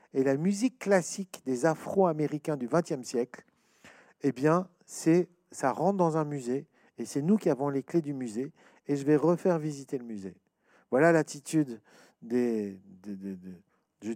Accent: French